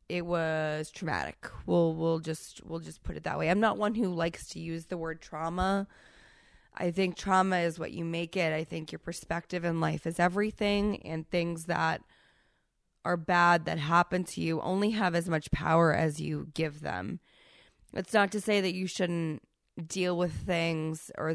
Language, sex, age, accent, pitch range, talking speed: English, female, 20-39, American, 160-195 Hz, 190 wpm